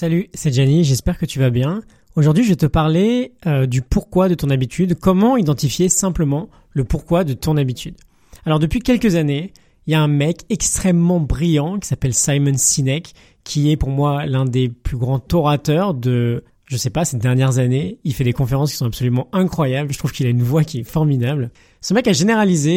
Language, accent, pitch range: French, French, 135-180 Hz